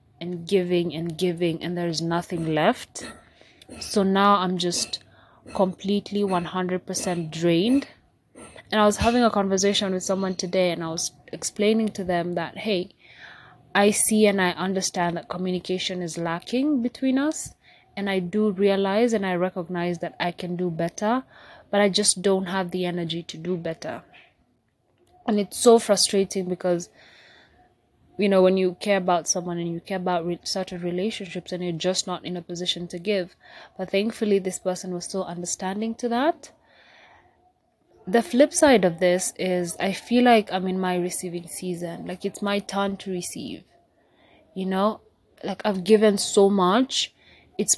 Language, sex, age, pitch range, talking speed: English, female, 20-39, 175-205 Hz, 165 wpm